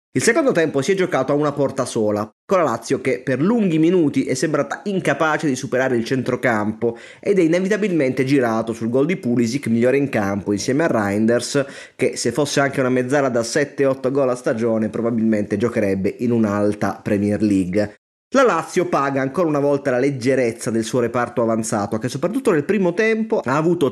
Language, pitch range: Italian, 115-165 Hz